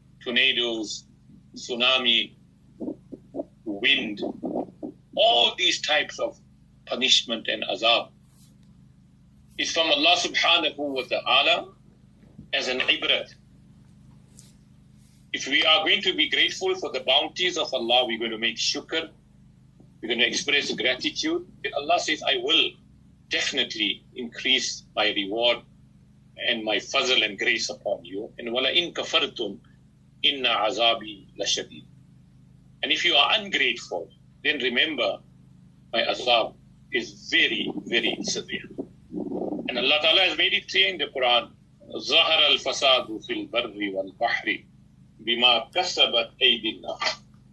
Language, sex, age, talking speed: English, male, 50-69, 105 wpm